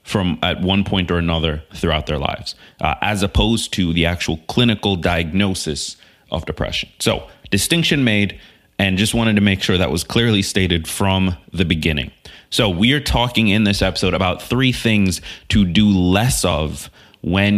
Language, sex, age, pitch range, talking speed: English, male, 30-49, 80-100 Hz, 170 wpm